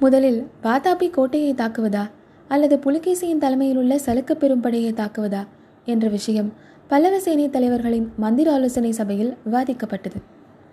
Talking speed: 105 wpm